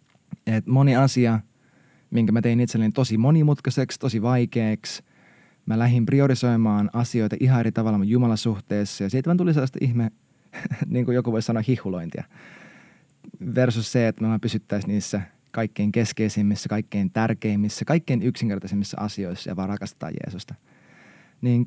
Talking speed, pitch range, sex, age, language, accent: 135 wpm, 105-125 Hz, male, 20-39, Finnish, native